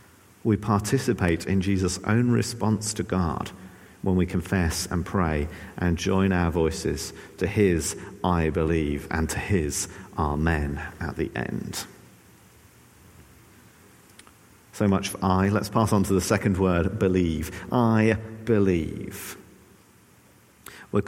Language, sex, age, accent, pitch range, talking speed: English, male, 50-69, British, 95-125 Hz, 120 wpm